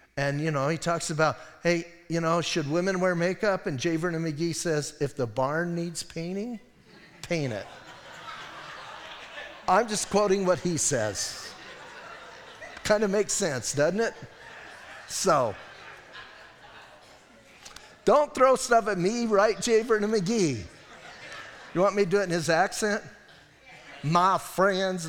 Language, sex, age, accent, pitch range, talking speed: English, male, 50-69, American, 140-200 Hz, 140 wpm